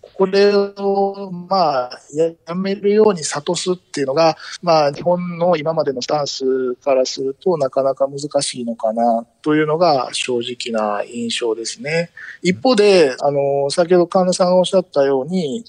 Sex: male